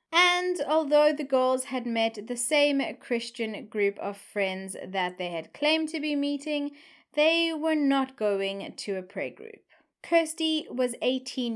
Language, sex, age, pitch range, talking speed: English, female, 20-39, 220-300 Hz, 155 wpm